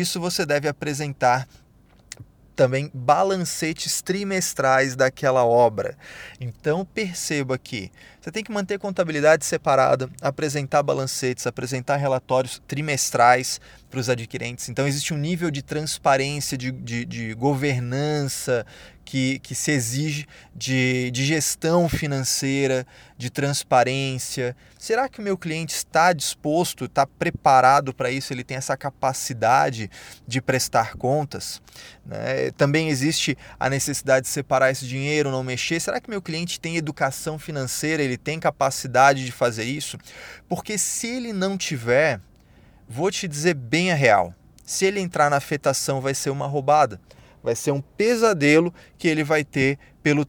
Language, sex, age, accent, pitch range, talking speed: Portuguese, male, 20-39, Brazilian, 130-155 Hz, 140 wpm